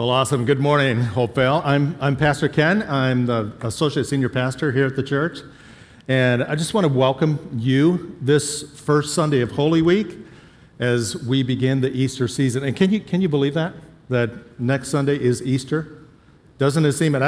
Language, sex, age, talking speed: English, male, 50-69, 190 wpm